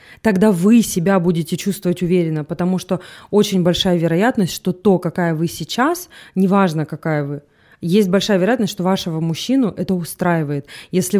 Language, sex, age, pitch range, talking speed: Russian, female, 20-39, 175-215 Hz, 150 wpm